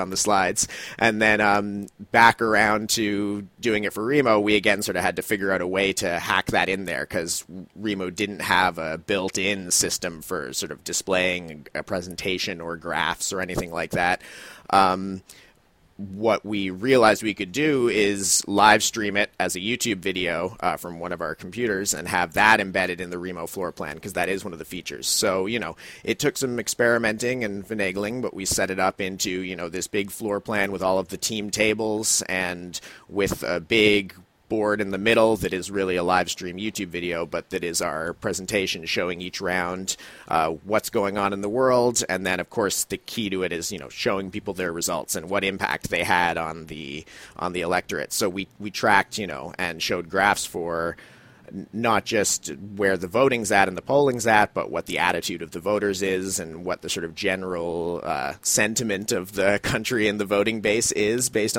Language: English